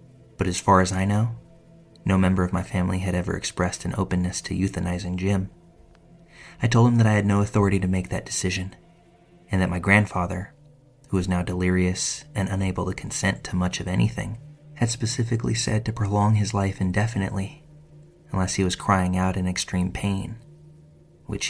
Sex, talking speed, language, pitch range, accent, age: male, 180 wpm, English, 90-115 Hz, American, 30-49